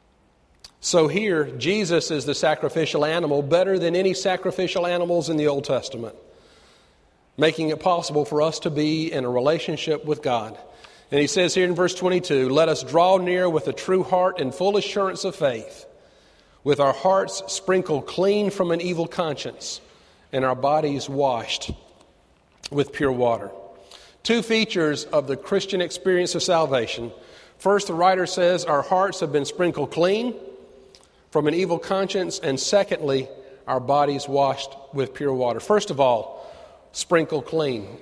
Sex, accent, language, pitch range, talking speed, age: male, American, English, 140-190 Hz, 155 wpm, 40-59